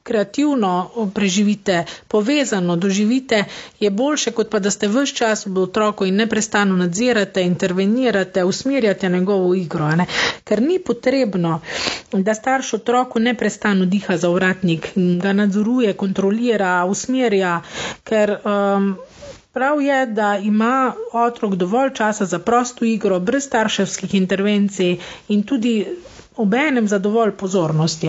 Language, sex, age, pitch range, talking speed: English, female, 40-59, 190-240 Hz, 125 wpm